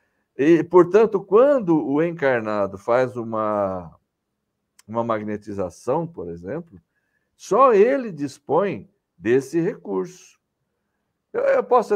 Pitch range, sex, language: 115-195 Hz, male, Portuguese